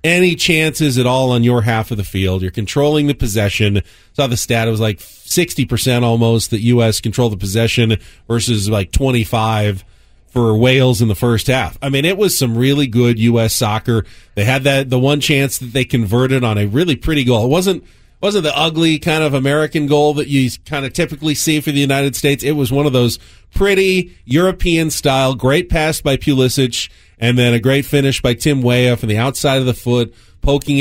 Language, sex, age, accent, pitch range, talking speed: English, male, 40-59, American, 115-150 Hz, 205 wpm